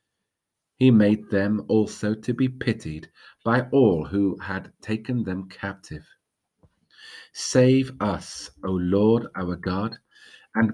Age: 40-59